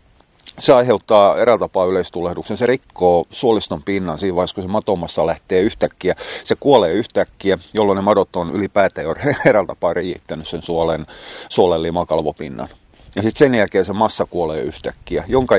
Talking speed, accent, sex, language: 150 wpm, native, male, Finnish